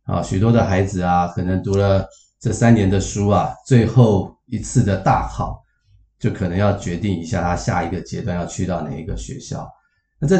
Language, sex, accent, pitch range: Chinese, male, native, 95-120 Hz